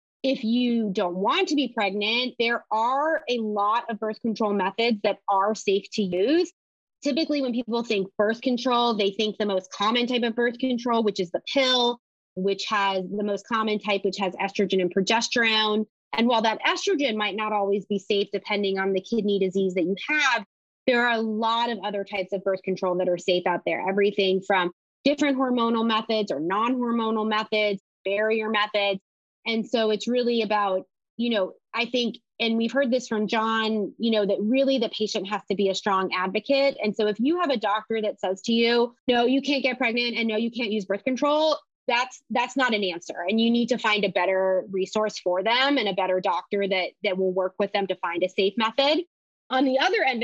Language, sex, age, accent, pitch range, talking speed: English, female, 30-49, American, 200-240 Hz, 210 wpm